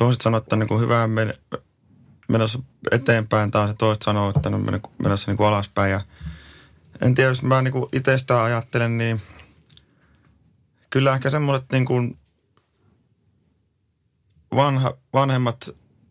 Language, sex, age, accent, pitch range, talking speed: Finnish, male, 30-49, native, 105-125 Hz, 130 wpm